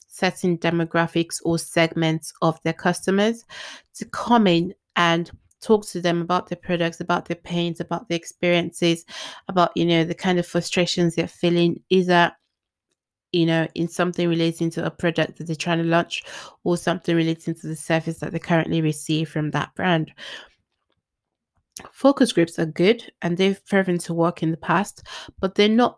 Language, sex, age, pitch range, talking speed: English, female, 20-39, 165-195 Hz, 170 wpm